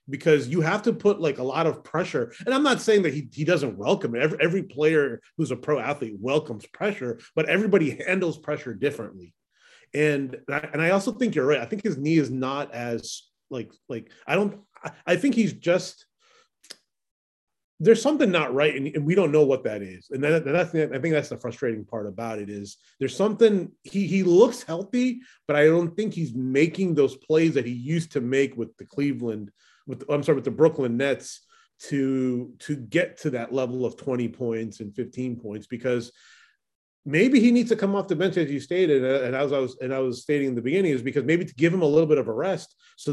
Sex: male